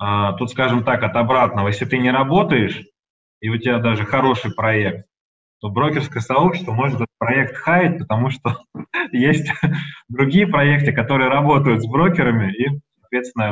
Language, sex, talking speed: Russian, male, 150 wpm